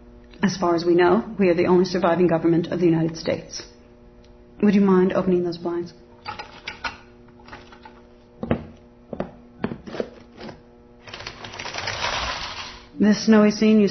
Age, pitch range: 40-59, 170-210 Hz